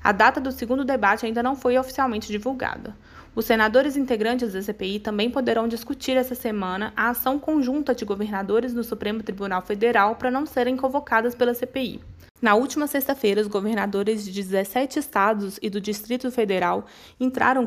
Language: Portuguese